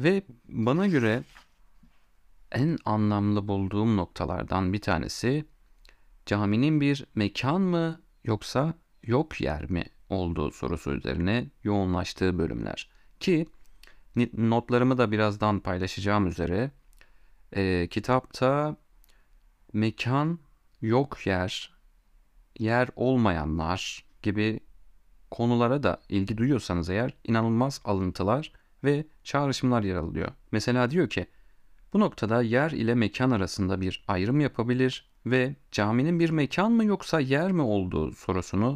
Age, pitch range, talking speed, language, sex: 40-59, 95-140 Hz, 105 wpm, Turkish, male